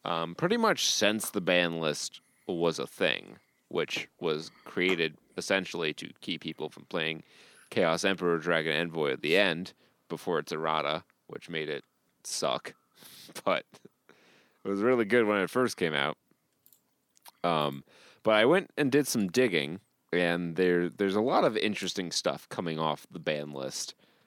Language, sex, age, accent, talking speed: English, male, 30-49, American, 160 wpm